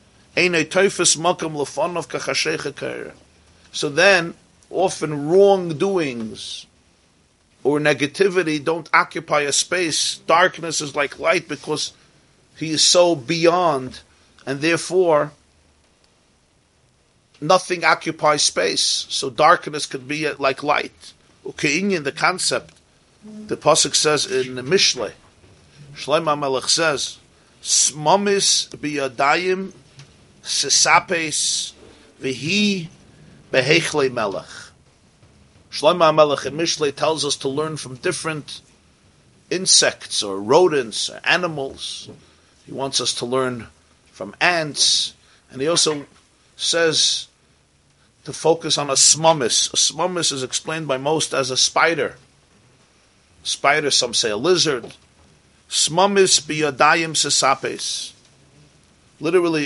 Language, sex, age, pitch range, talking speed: English, male, 40-59, 135-165 Hz, 95 wpm